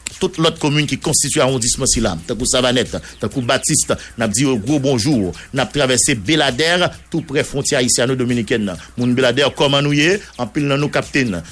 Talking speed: 175 wpm